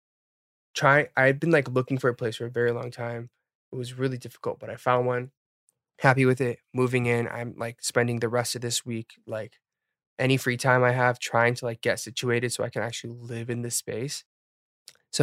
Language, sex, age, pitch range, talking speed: English, male, 20-39, 120-155 Hz, 215 wpm